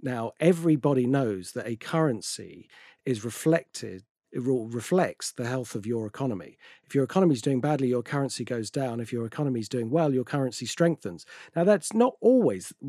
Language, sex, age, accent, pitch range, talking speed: English, male, 40-59, British, 120-150 Hz, 175 wpm